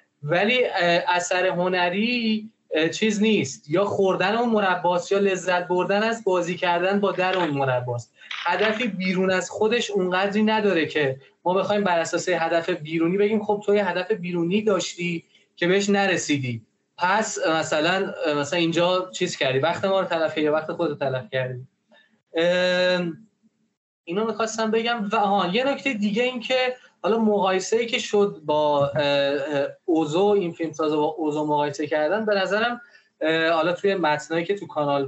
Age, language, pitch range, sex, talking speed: 20-39, Persian, 160-210 Hz, male, 150 wpm